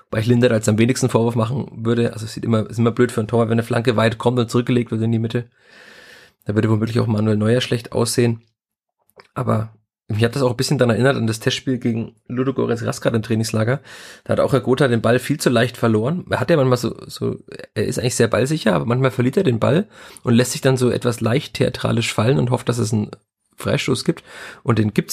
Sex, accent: male, German